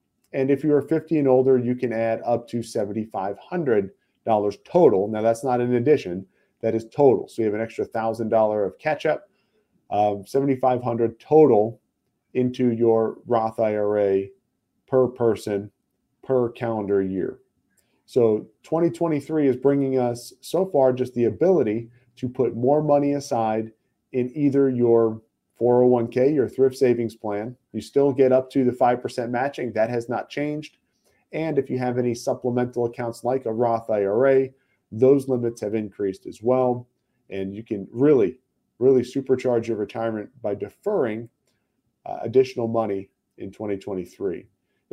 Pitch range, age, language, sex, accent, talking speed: 110-135 Hz, 40-59, English, male, American, 145 wpm